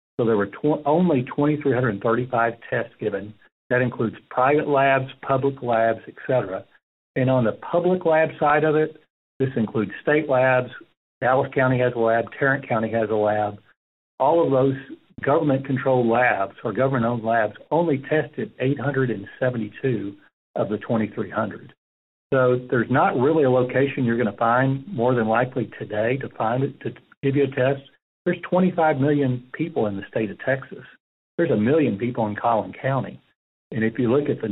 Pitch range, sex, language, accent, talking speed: 110-135 Hz, male, English, American, 170 wpm